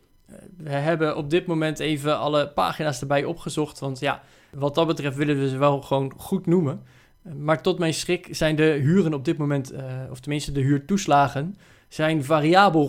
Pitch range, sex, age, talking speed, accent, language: 140-165 Hz, male, 20-39, 175 wpm, Dutch, Dutch